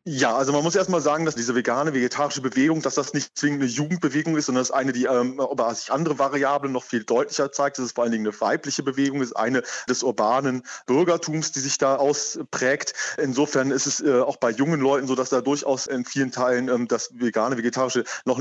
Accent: German